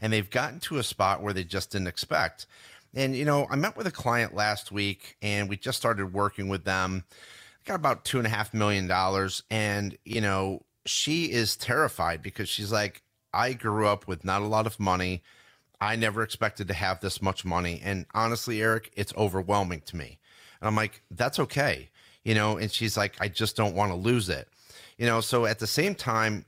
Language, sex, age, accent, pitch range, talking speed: English, male, 30-49, American, 100-115 Hz, 210 wpm